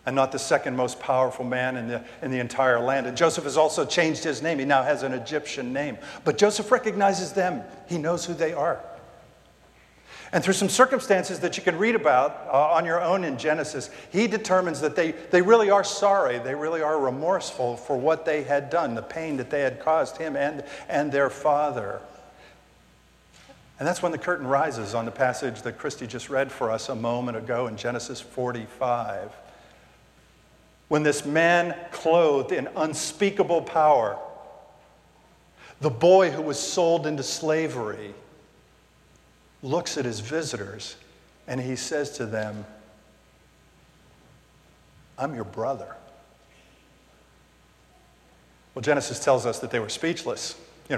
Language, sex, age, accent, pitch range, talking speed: English, male, 50-69, American, 120-170 Hz, 160 wpm